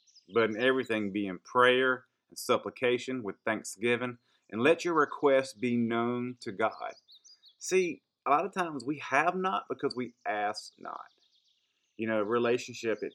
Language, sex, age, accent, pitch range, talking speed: English, male, 30-49, American, 110-135 Hz, 160 wpm